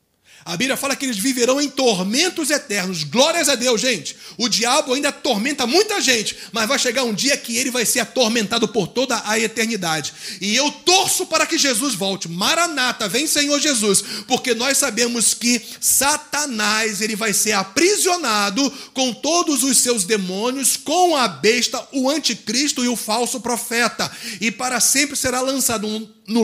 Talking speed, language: 170 wpm, Portuguese